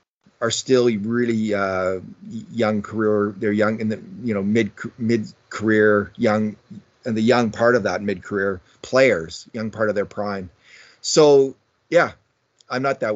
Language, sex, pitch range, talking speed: English, male, 100-120 Hz, 160 wpm